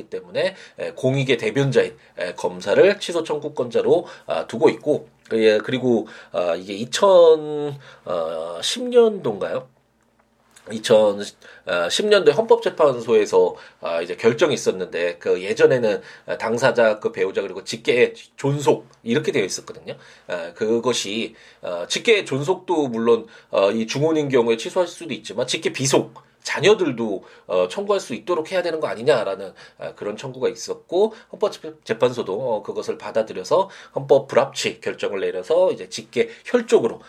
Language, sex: Korean, male